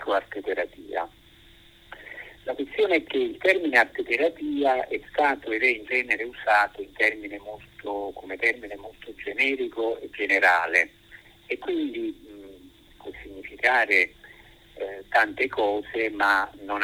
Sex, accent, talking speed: male, native, 105 wpm